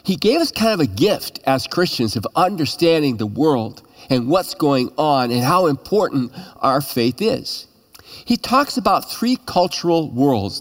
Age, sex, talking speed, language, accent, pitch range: 50-69, male, 165 wpm, English, American, 135-185 Hz